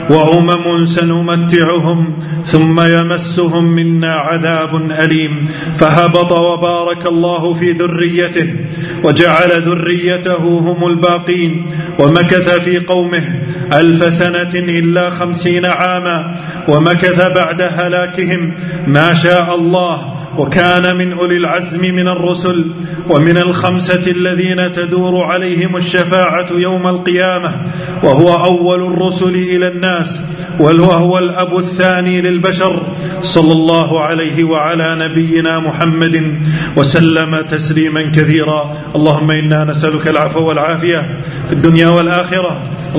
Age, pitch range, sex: 40-59, 160-180 Hz, male